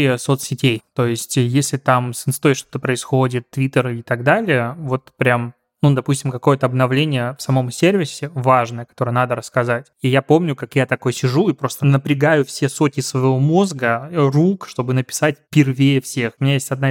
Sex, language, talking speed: male, Russian, 175 wpm